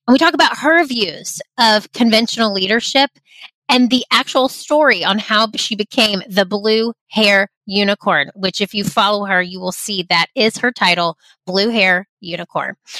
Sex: female